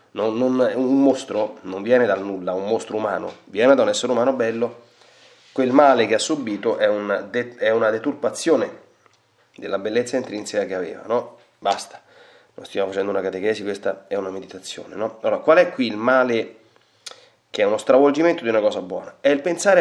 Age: 30-49